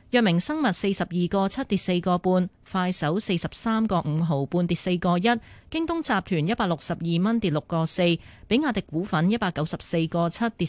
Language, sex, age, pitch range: Chinese, female, 30-49, 165-210 Hz